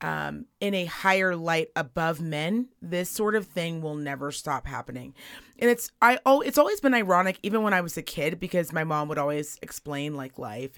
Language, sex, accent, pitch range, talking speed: English, female, American, 165-230 Hz, 205 wpm